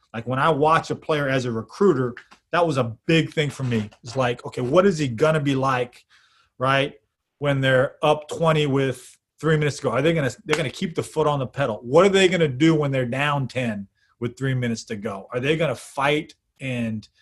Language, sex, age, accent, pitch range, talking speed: English, male, 30-49, American, 125-150 Hz, 225 wpm